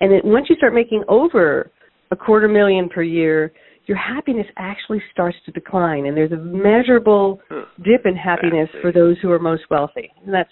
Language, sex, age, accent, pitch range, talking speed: English, female, 50-69, American, 175-230 Hz, 185 wpm